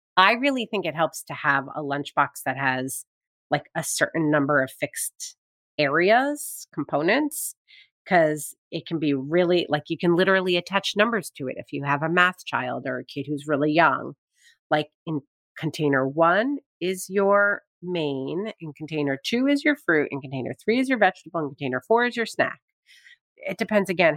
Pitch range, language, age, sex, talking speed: 145-220 Hz, English, 30-49, female, 180 wpm